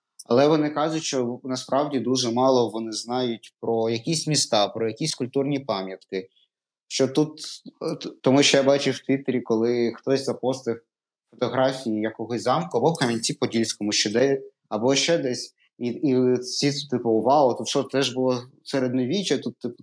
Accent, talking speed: native, 155 wpm